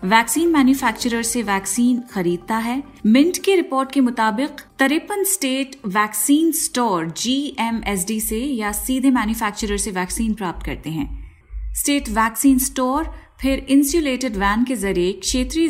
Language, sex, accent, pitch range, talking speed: Hindi, female, native, 200-275 Hz, 95 wpm